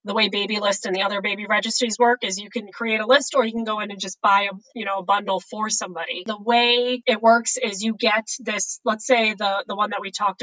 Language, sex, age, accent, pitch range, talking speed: English, female, 20-39, American, 200-245 Hz, 270 wpm